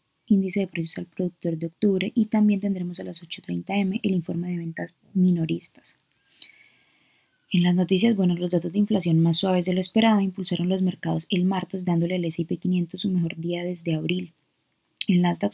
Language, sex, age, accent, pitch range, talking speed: Spanish, female, 20-39, Colombian, 170-195 Hz, 180 wpm